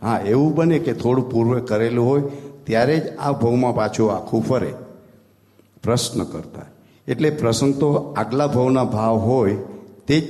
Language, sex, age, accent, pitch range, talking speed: Gujarati, male, 60-79, native, 105-140 Hz, 150 wpm